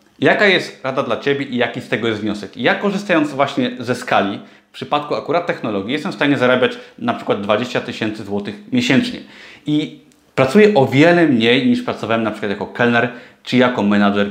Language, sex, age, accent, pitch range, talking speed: Polish, male, 30-49, native, 120-150 Hz, 185 wpm